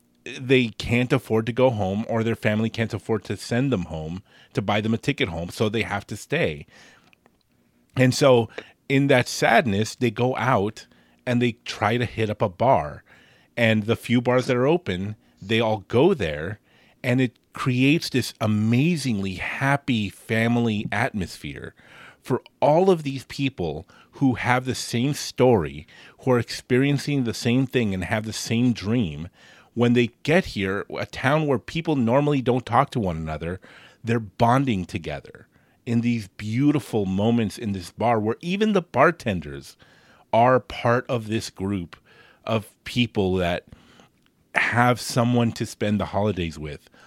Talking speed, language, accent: 160 wpm, English, American